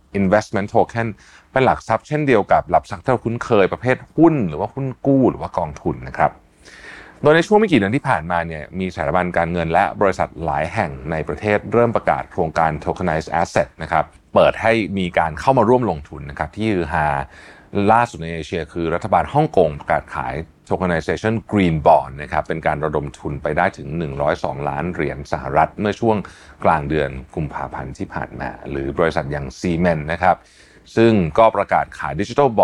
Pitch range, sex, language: 80-110 Hz, male, Thai